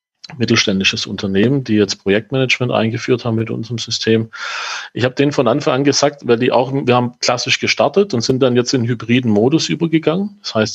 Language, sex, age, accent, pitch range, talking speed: German, male, 40-59, German, 110-140 Hz, 190 wpm